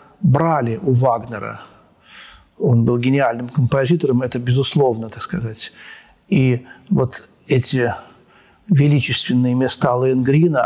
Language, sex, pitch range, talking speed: Russian, male, 125-165 Hz, 95 wpm